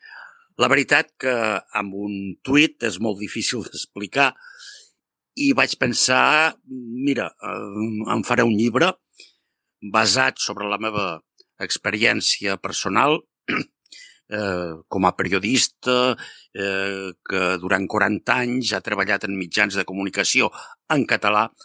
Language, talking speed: Italian, 115 wpm